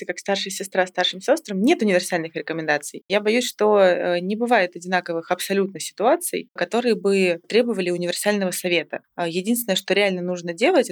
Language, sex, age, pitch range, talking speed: Russian, female, 20-39, 170-210 Hz, 145 wpm